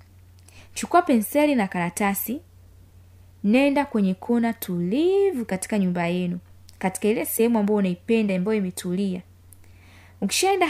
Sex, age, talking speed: female, 20-39, 105 wpm